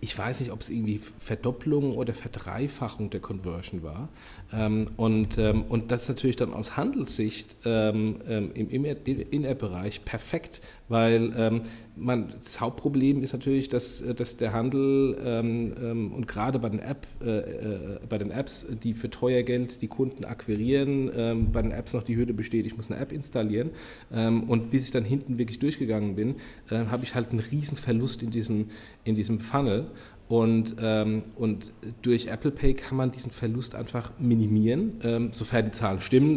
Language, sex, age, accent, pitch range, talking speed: German, male, 40-59, German, 105-125 Hz, 155 wpm